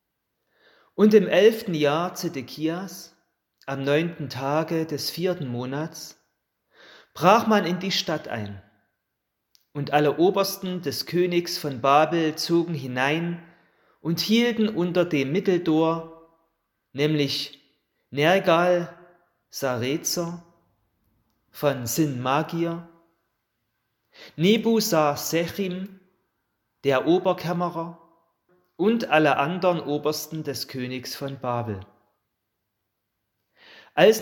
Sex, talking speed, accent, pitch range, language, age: male, 85 wpm, German, 135-175 Hz, German, 30-49